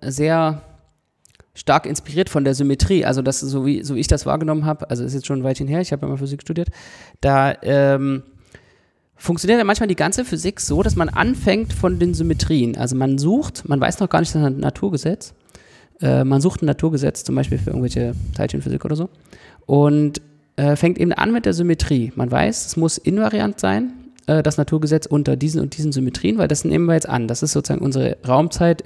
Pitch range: 130-165 Hz